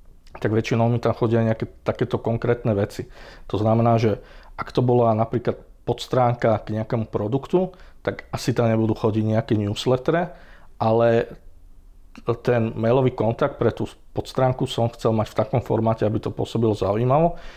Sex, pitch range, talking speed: male, 110-120 Hz, 150 wpm